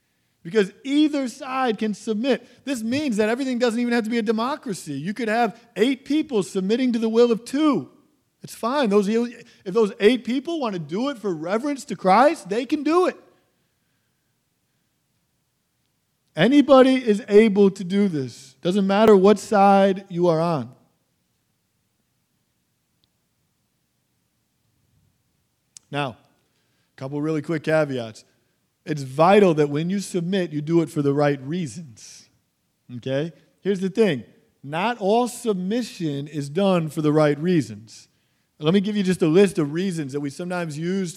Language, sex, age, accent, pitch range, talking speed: English, male, 40-59, American, 150-220 Hz, 155 wpm